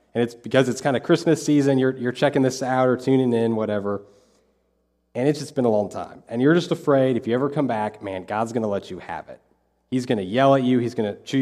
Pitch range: 110-135 Hz